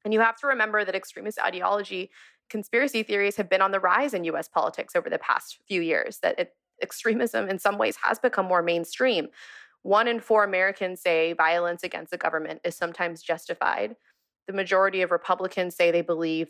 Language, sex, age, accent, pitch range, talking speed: English, female, 20-39, American, 175-210 Hz, 185 wpm